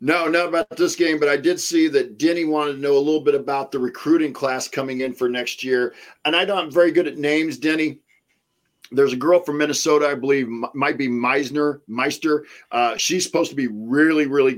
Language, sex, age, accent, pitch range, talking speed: English, male, 50-69, American, 130-180 Hz, 215 wpm